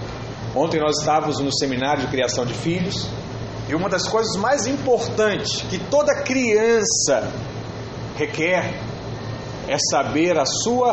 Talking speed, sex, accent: 125 wpm, male, Brazilian